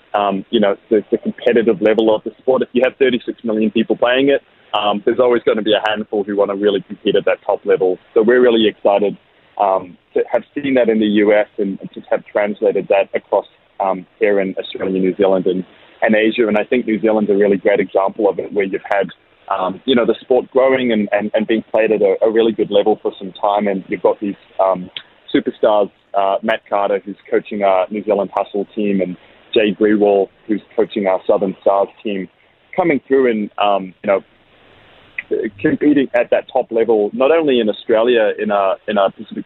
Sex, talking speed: male, 215 wpm